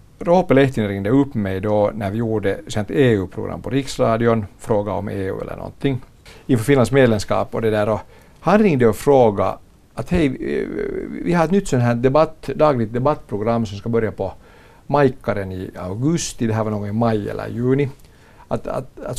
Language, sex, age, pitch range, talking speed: Swedish, male, 50-69, 105-140 Hz, 170 wpm